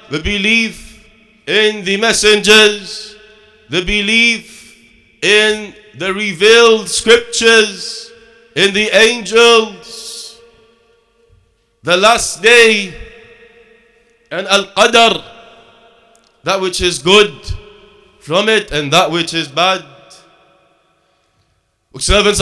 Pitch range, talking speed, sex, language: 190-230 Hz, 85 wpm, male, English